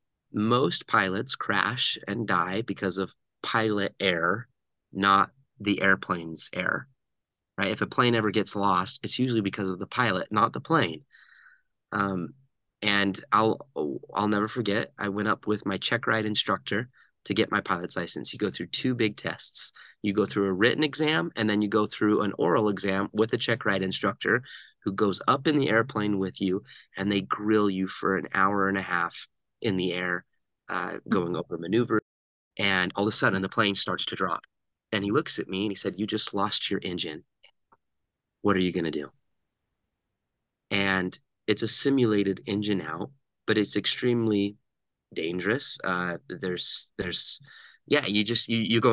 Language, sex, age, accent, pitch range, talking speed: English, male, 30-49, American, 95-115 Hz, 180 wpm